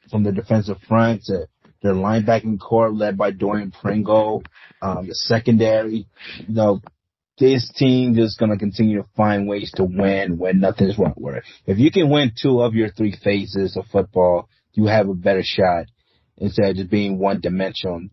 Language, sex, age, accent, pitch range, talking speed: English, male, 30-49, American, 100-115 Hz, 180 wpm